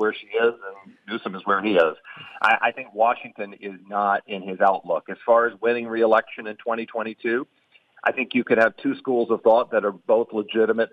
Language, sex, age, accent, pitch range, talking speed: English, male, 40-59, American, 100-135 Hz, 210 wpm